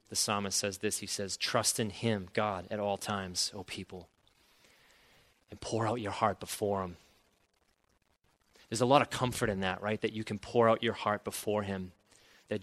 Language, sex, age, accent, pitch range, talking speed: English, male, 30-49, American, 100-115 Hz, 190 wpm